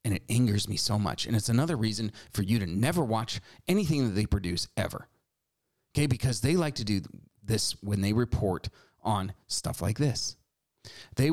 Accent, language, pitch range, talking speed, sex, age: American, English, 105-130 Hz, 185 wpm, male, 30-49